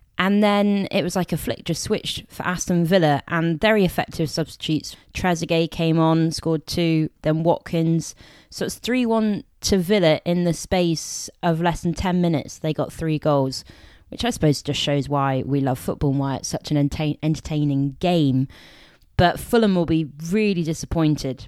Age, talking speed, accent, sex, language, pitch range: 20-39, 175 wpm, British, female, English, 145-175 Hz